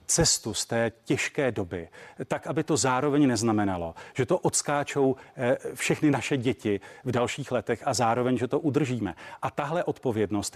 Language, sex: Czech, male